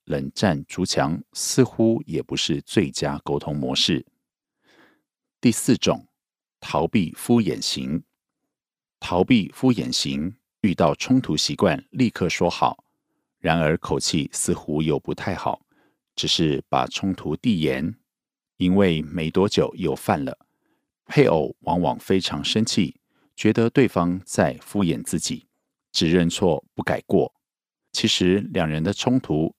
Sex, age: male, 50-69